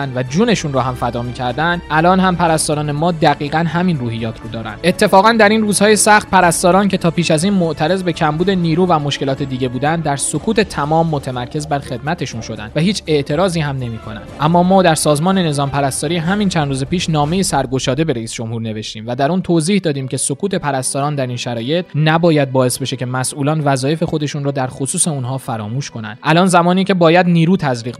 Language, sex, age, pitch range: Persian, male, 20-39, 135-180 Hz